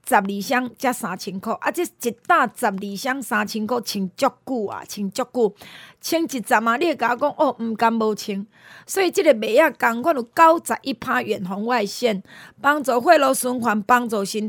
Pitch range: 215-280 Hz